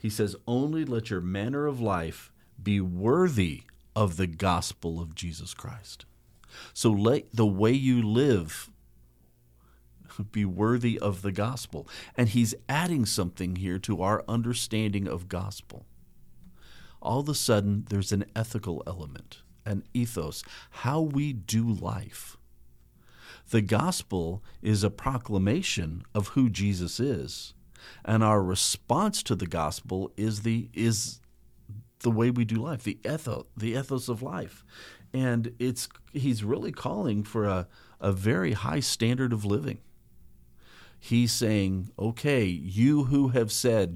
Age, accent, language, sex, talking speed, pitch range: 50-69, American, English, male, 135 wpm, 90-115 Hz